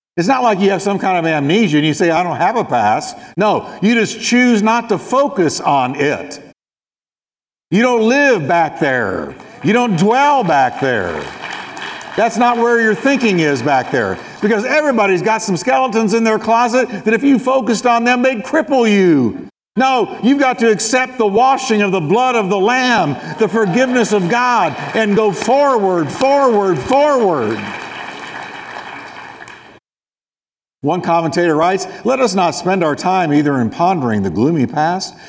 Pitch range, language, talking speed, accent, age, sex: 165-235 Hz, English, 165 wpm, American, 60-79, male